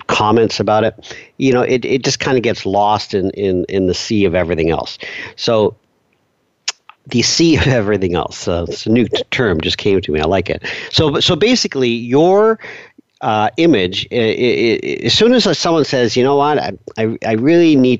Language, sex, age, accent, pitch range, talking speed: English, male, 50-69, American, 95-130 Hz, 205 wpm